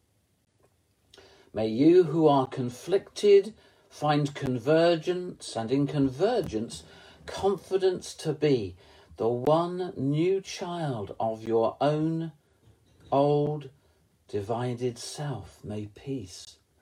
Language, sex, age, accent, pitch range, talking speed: English, male, 50-69, British, 100-155 Hz, 90 wpm